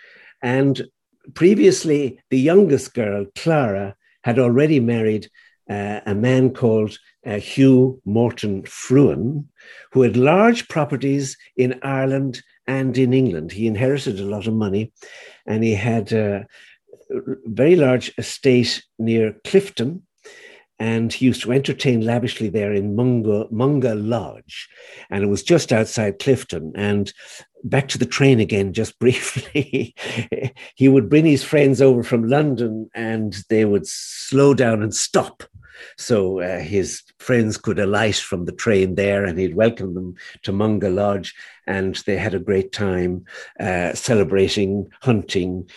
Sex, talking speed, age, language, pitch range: male, 140 wpm, 60-79, English, 100-135 Hz